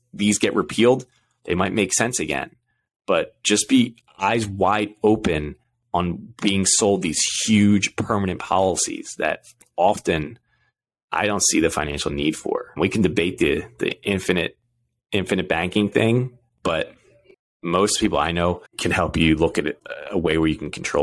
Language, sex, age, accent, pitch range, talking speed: English, male, 20-39, American, 80-110 Hz, 160 wpm